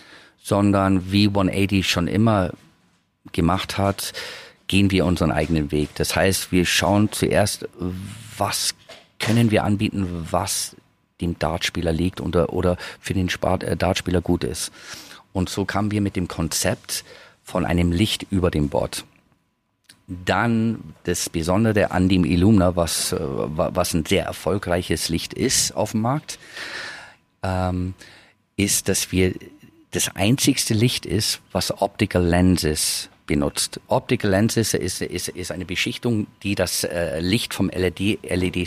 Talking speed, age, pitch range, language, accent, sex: 135 wpm, 40-59, 90-105 Hz, German, German, male